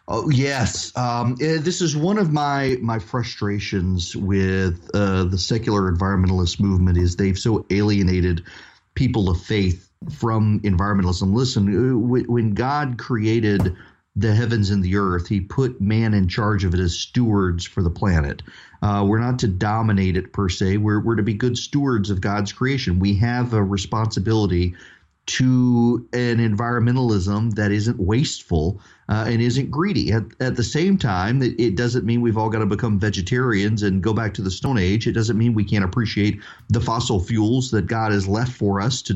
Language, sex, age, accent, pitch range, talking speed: English, male, 40-59, American, 100-125 Hz, 175 wpm